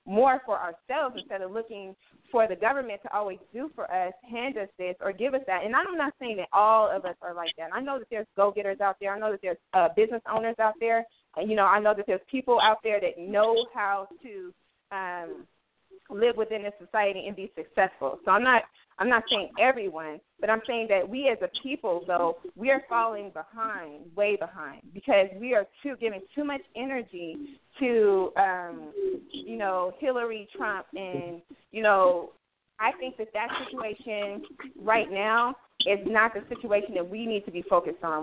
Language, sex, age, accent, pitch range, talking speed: English, female, 20-39, American, 195-250 Hz, 195 wpm